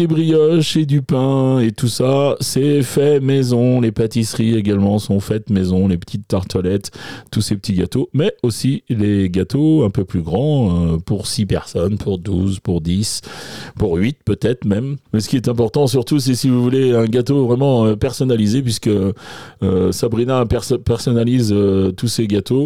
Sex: male